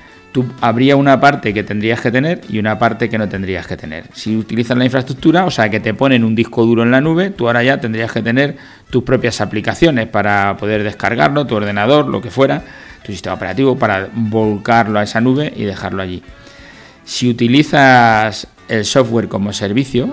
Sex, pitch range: male, 105-130 Hz